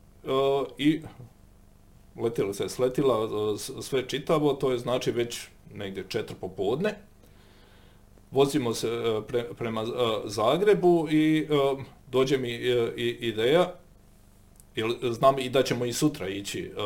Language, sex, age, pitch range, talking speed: Croatian, male, 40-59, 100-145 Hz, 105 wpm